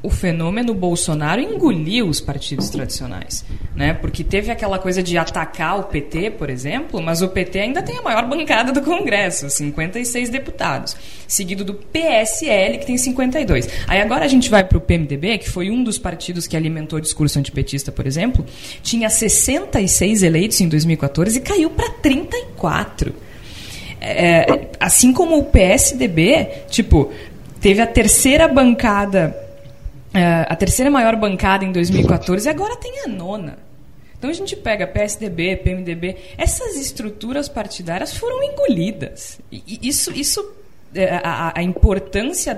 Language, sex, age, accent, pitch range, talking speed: Portuguese, female, 20-39, Brazilian, 170-265 Hz, 140 wpm